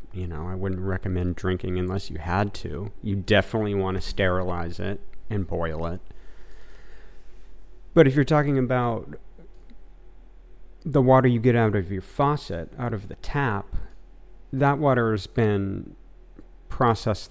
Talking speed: 140 wpm